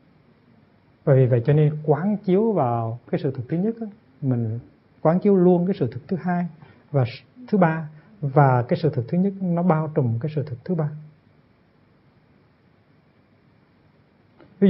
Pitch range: 130-165 Hz